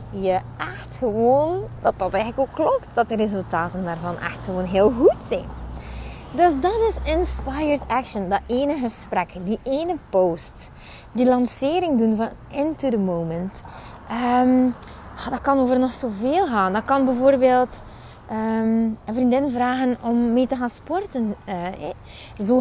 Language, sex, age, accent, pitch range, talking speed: Dutch, female, 20-39, Dutch, 190-270 Hz, 145 wpm